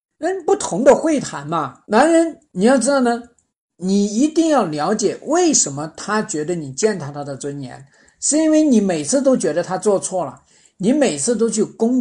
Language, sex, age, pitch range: Chinese, male, 50-69, 160-245 Hz